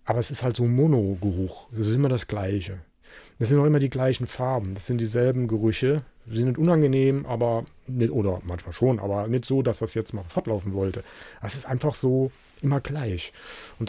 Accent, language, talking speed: German, German, 205 wpm